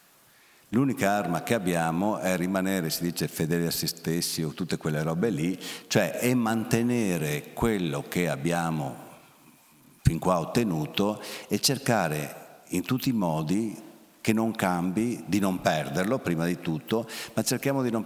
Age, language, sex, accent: 50-69, Italian, male, native